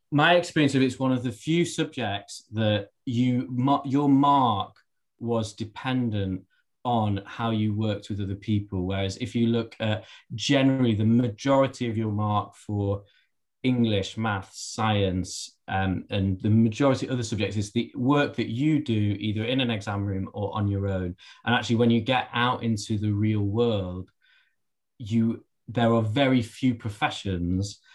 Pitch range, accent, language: 100-120 Hz, British, English